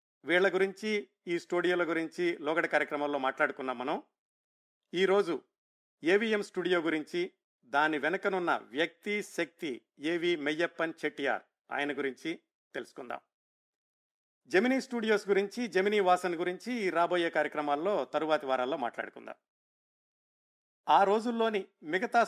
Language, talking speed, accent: Telugu, 100 wpm, native